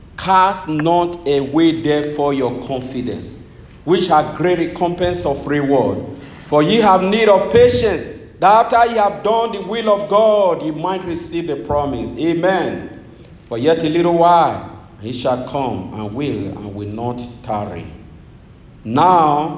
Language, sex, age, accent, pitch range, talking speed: English, male, 50-69, Nigerian, 140-180 Hz, 145 wpm